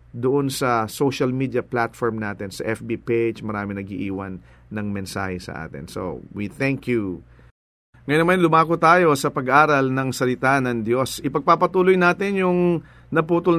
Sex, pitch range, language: male, 120-165 Hz, English